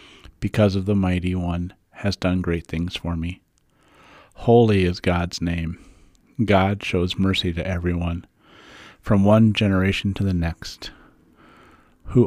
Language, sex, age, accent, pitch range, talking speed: English, male, 50-69, American, 90-105 Hz, 130 wpm